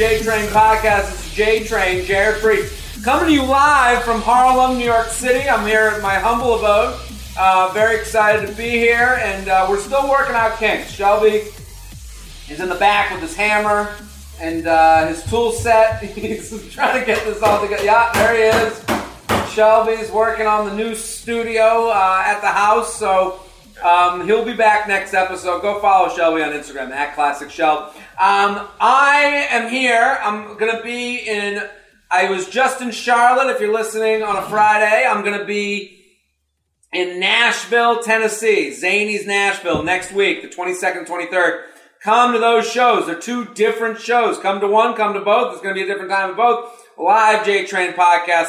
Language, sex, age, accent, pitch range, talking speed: English, male, 40-59, American, 190-230 Hz, 180 wpm